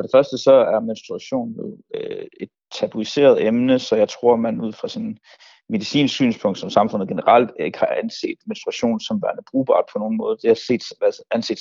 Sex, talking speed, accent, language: male, 180 wpm, native, Danish